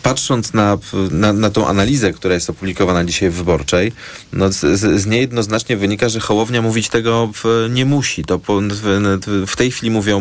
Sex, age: male, 40-59